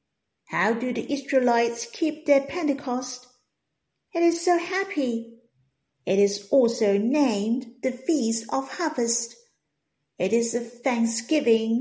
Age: 50-69